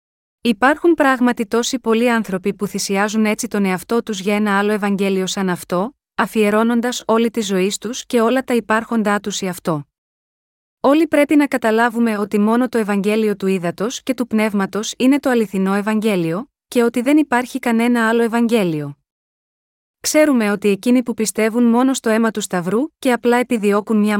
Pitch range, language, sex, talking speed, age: 200-245 Hz, Greek, female, 165 wpm, 20-39